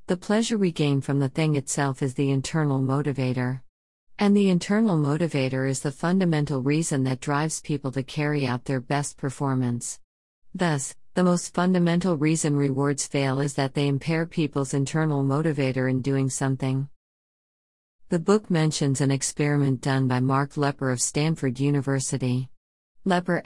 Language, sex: English, female